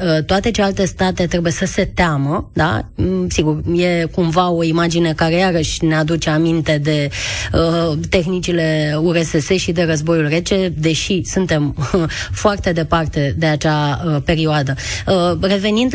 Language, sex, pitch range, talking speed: Romanian, female, 160-190 Hz, 145 wpm